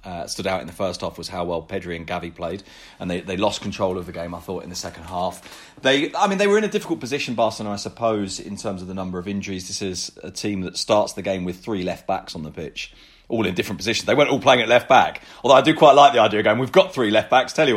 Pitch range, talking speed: 95-125 Hz, 300 wpm